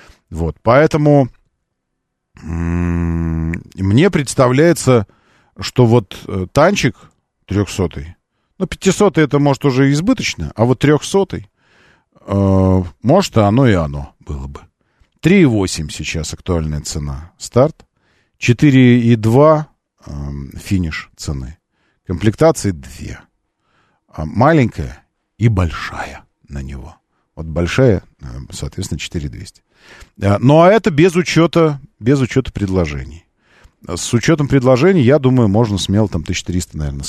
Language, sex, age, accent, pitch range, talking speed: Russian, male, 40-59, native, 85-140 Hz, 105 wpm